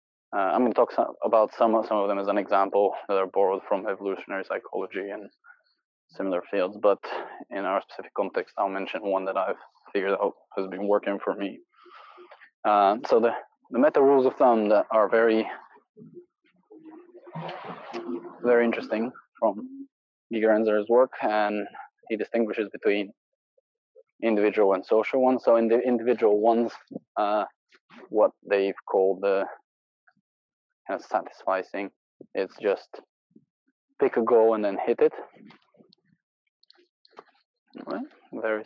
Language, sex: English, male